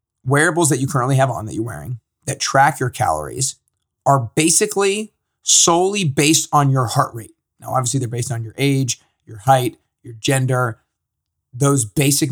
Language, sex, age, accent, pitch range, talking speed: English, male, 30-49, American, 120-145 Hz, 165 wpm